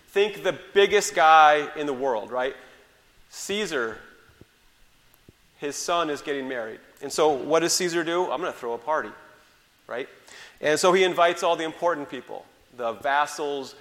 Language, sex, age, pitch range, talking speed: English, male, 30-49, 140-170 Hz, 160 wpm